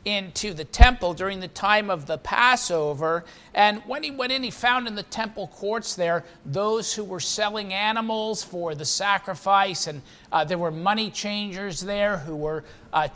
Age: 50-69